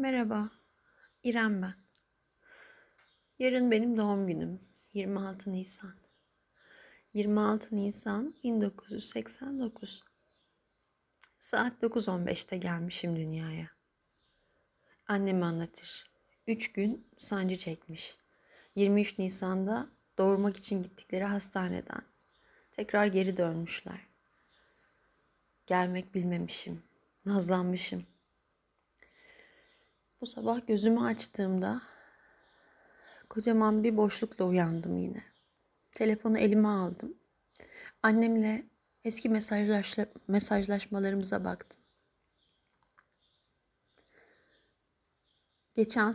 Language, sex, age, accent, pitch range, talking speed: Turkish, female, 30-49, native, 195-235 Hz, 65 wpm